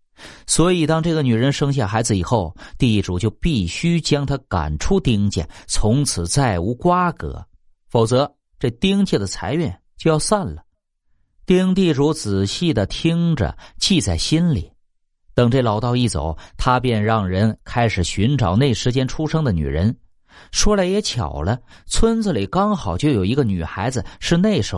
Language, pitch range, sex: Chinese, 100-150 Hz, male